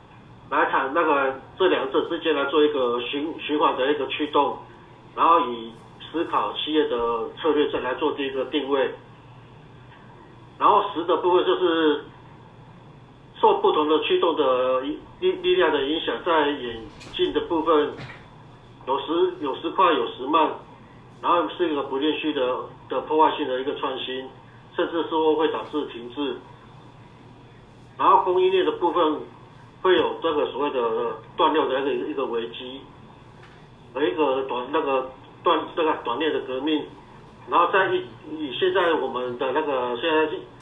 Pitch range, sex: 130-165 Hz, male